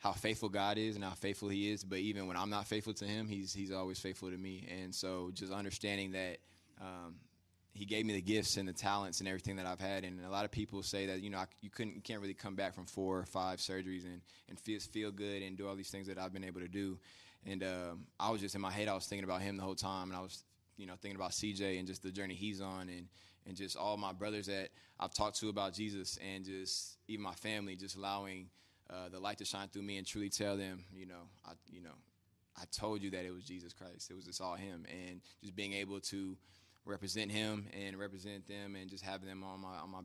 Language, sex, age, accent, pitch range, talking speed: English, male, 20-39, American, 90-100 Hz, 265 wpm